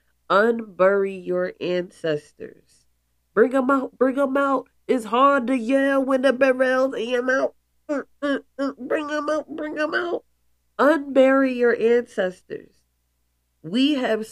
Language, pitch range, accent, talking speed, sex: English, 150-220 Hz, American, 120 wpm, female